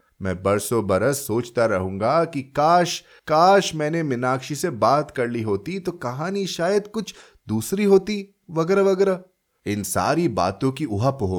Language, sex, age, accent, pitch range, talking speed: Hindi, male, 30-49, native, 125-185 Hz, 150 wpm